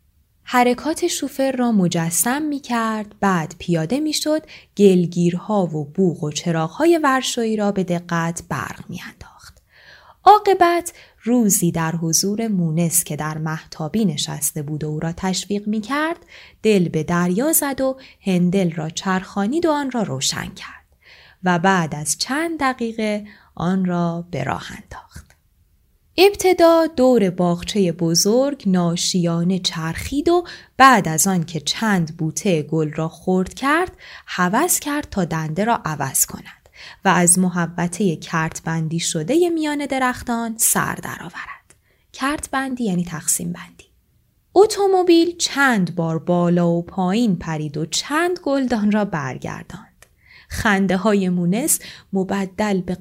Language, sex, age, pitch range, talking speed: Persian, female, 10-29, 170-255 Hz, 130 wpm